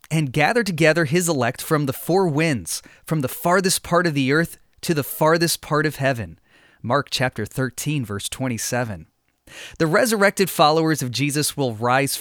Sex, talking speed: male, 165 wpm